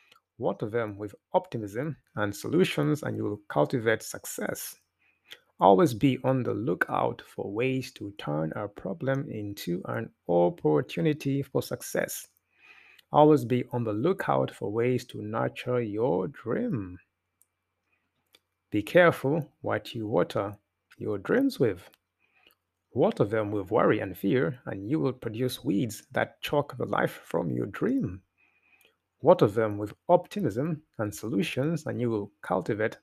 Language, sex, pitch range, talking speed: English, male, 100-140 Hz, 135 wpm